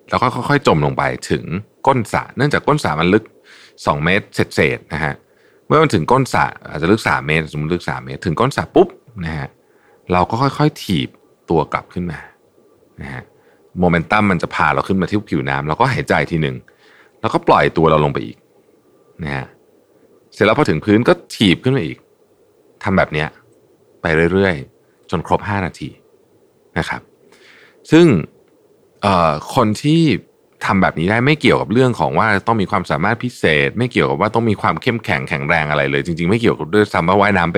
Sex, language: male, Thai